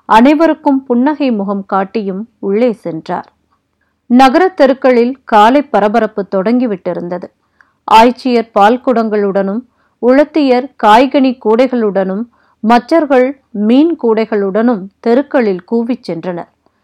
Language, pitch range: Tamil, 210-255 Hz